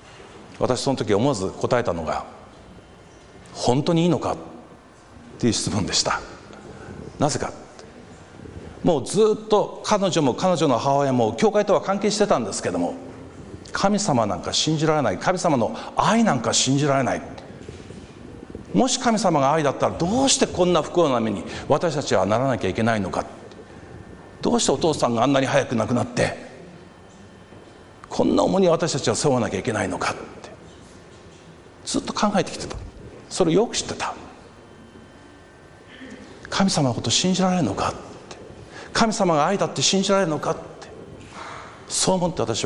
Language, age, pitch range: Japanese, 50-69, 110-175 Hz